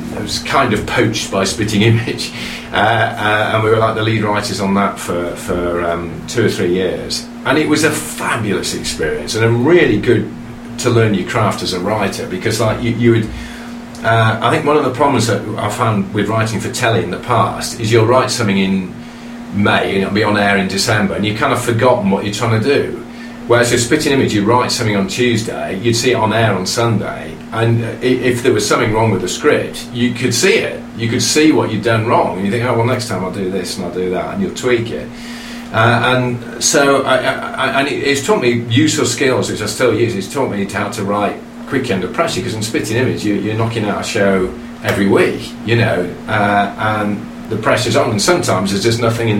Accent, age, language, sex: British, 40-59, English, male